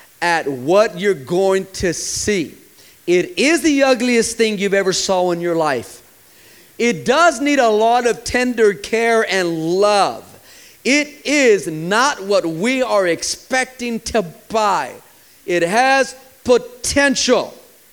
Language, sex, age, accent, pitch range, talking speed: English, male, 40-59, American, 190-275 Hz, 130 wpm